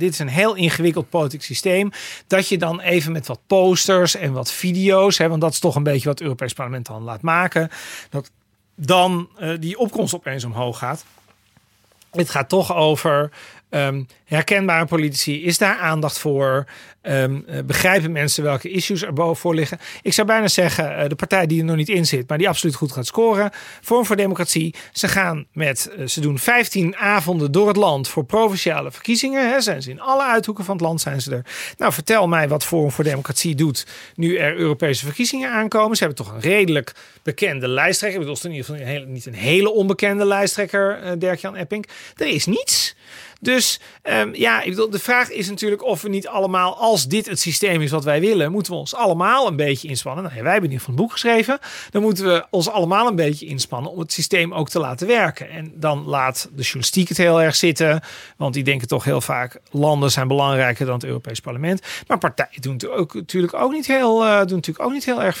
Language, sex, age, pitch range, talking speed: Dutch, male, 40-59, 145-195 Hz, 215 wpm